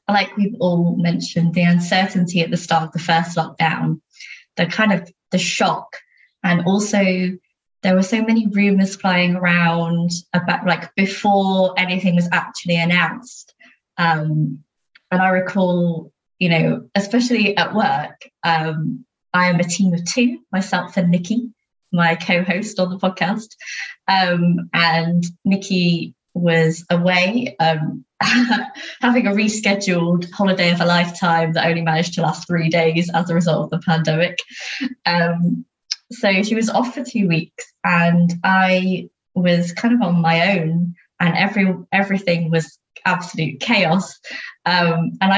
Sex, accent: female, British